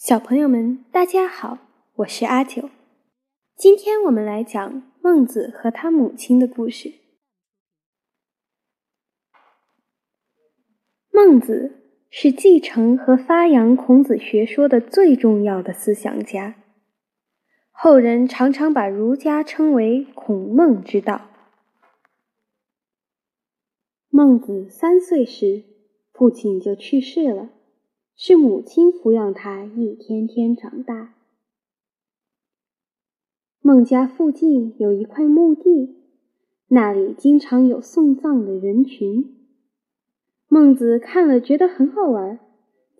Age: 10-29